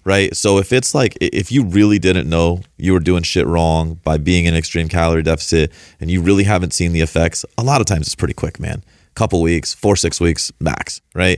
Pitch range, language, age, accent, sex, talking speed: 85-95 Hz, English, 30-49, American, male, 230 wpm